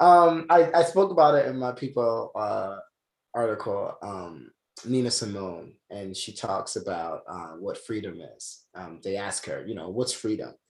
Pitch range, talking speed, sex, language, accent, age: 110-150 Hz, 170 wpm, male, English, American, 20-39